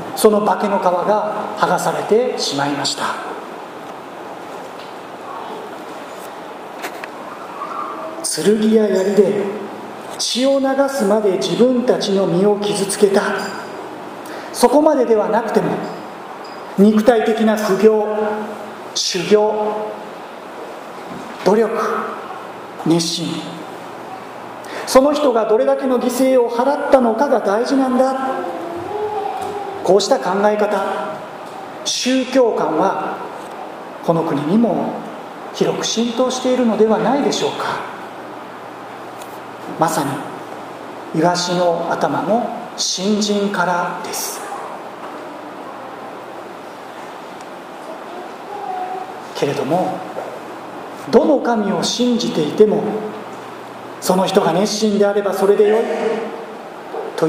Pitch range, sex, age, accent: 200-255 Hz, male, 40-59, native